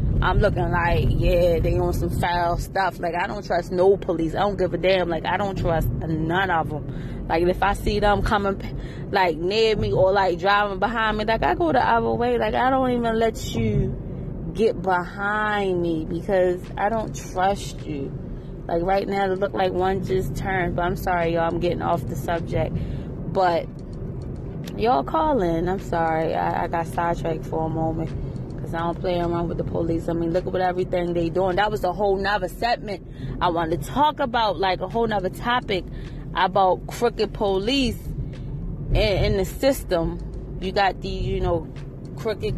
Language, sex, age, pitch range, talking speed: English, female, 20-39, 165-205 Hz, 190 wpm